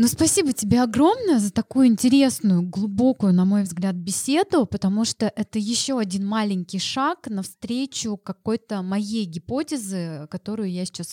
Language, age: Russian, 20-39